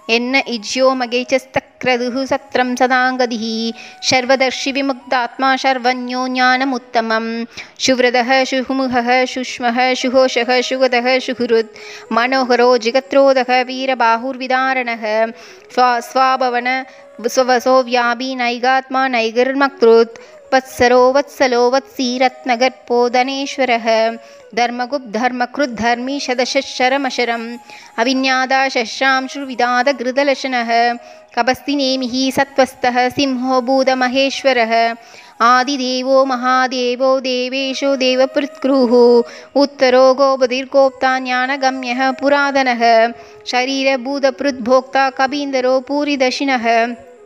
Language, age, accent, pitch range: Tamil, 20-39, native, 245-270 Hz